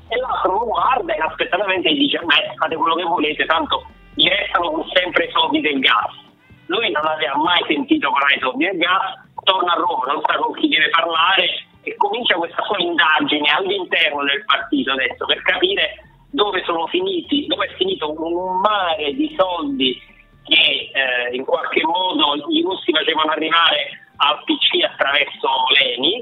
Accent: native